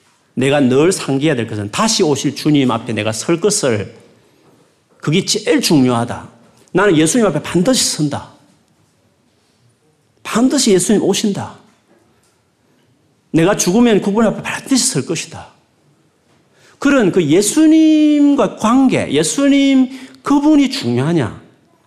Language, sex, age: Korean, male, 40-59